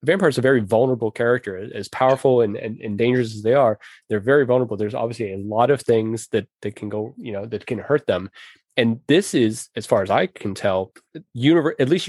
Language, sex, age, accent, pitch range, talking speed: English, male, 20-39, American, 105-130 Hz, 230 wpm